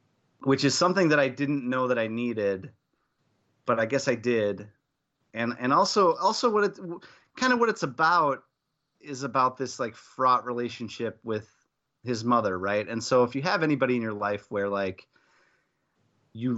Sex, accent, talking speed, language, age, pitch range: male, American, 175 wpm, English, 30-49, 105-135 Hz